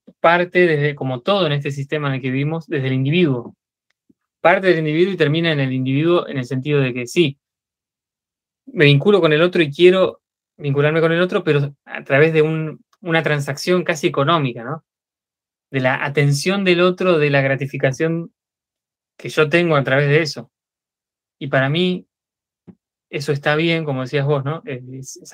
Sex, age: male, 20-39